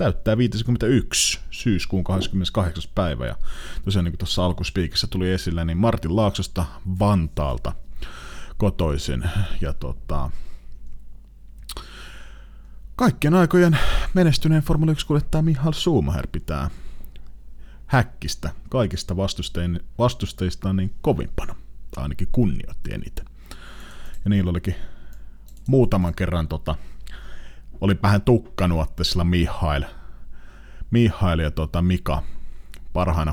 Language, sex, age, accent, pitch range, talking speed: Finnish, male, 30-49, native, 70-105 Hz, 95 wpm